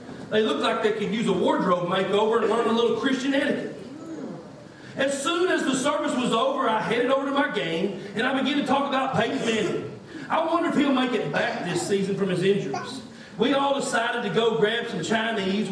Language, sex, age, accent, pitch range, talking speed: English, male, 40-59, American, 220-270 Hz, 215 wpm